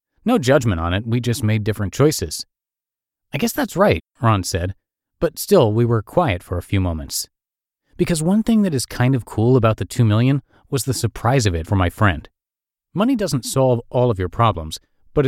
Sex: male